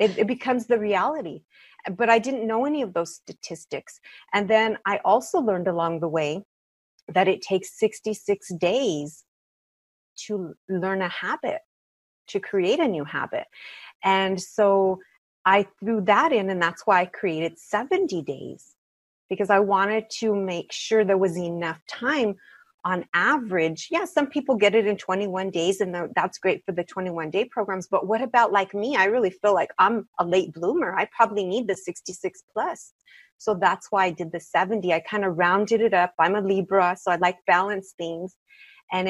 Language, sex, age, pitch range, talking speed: English, female, 30-49, 180-225 Hz, 180 wpm